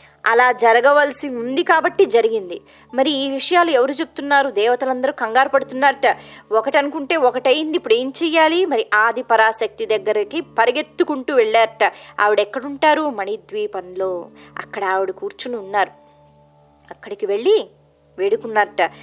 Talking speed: 105 wpm